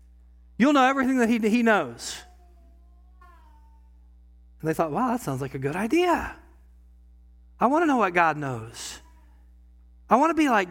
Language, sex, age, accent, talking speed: English, male, 40-59, American, 160 wpm